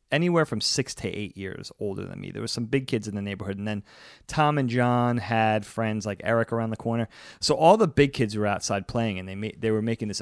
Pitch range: 105-135 Hz